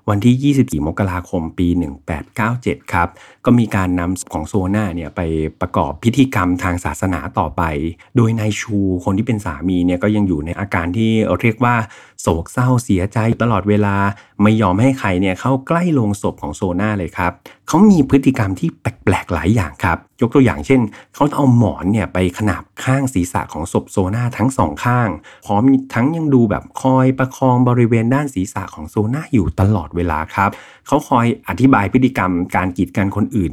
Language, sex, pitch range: Thai, male, 90-115 Hz